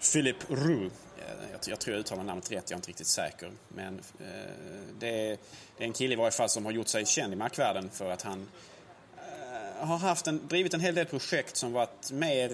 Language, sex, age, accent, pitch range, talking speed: Swedish, male, 30-49, Norwegian, 105-135 Hz, 225 wpm